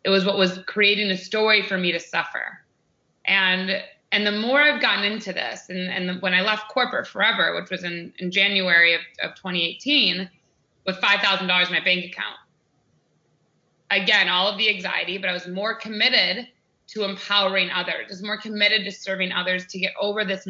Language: English